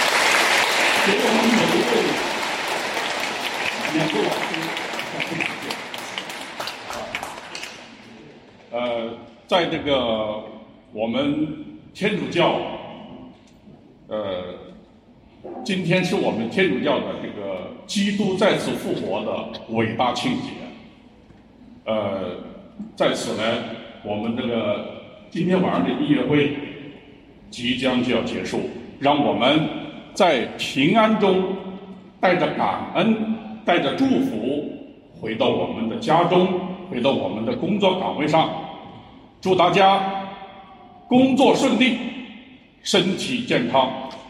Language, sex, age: English, male, 50-69